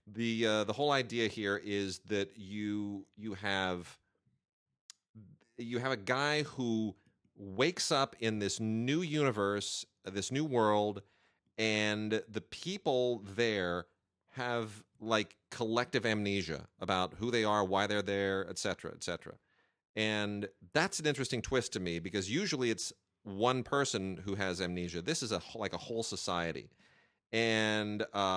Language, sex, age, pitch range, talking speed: English, male, 30-49, 95-120 Hz, 140 wpm